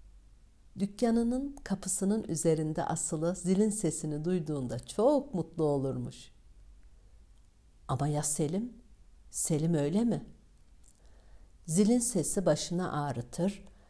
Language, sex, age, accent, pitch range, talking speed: Turkish, female, 60-79, native, 135-190 Hz, 85 wpm